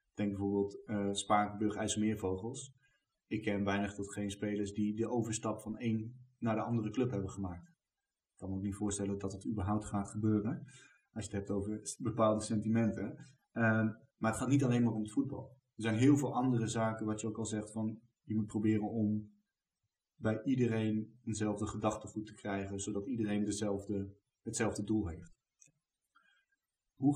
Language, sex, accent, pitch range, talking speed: Dutch, male, Dutch, 100-120 Hz, 170 wpm